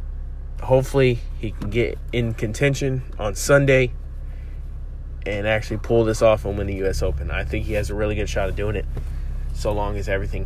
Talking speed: 190 wpm